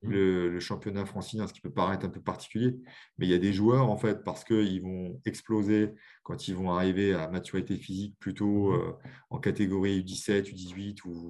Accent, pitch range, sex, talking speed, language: French, 95-120 Hz, male, 200 wpm, French